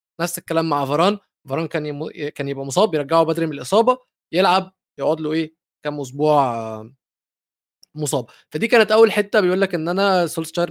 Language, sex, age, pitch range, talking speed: Arabic, male, 20-39, 145-195 Hz, 155 wpm